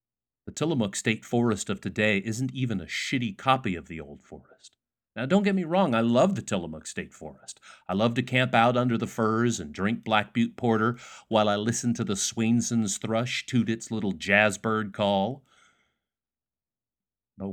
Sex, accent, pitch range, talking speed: male, American, 110-135 Hz, 180 wpm